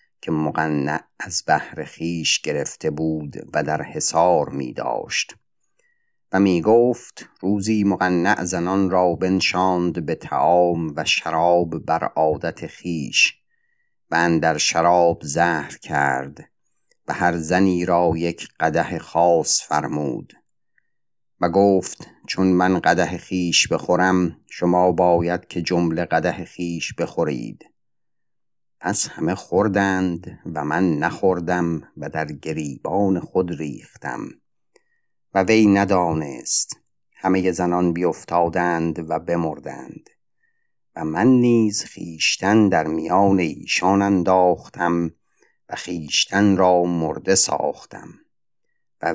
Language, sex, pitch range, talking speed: Persian, male, 85-95 Hz, 105 wpm